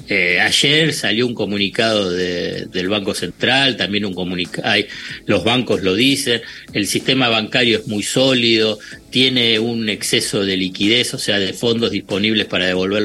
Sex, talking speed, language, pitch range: male, 145 wpm, Spanish, 105-135 Hz